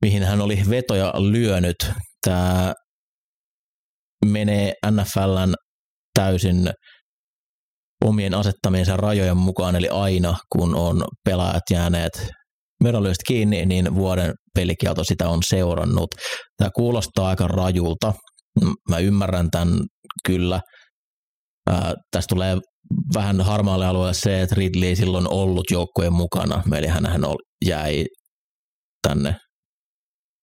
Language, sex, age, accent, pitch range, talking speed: Finnish, male, 30-49, native, 85-100 Hz, 105 wpm